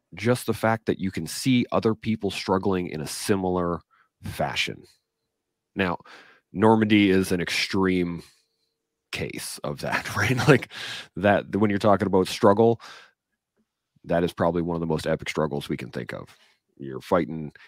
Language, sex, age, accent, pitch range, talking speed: English, male, 30-49, American, 75-95 Hz, 155 wpm